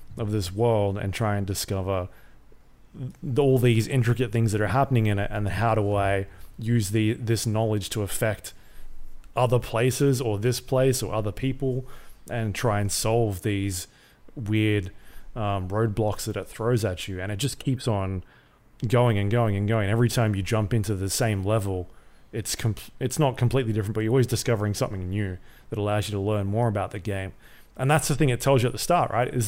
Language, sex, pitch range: English, male, 105-130 Hz